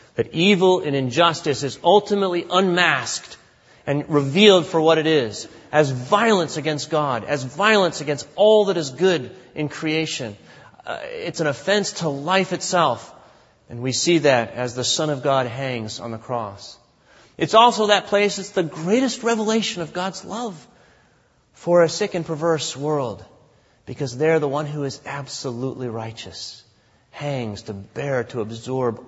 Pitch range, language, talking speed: 115-160 Hz, English, 155 wpm